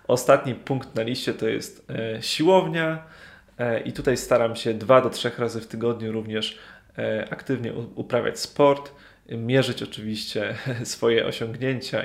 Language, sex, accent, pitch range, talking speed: Polish, male, native, 110-135 Hz, 125 wpm